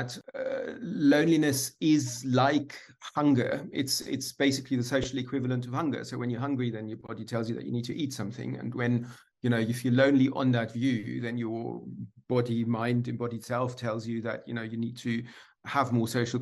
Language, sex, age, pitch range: English, male, 40-59, 120-150 Hz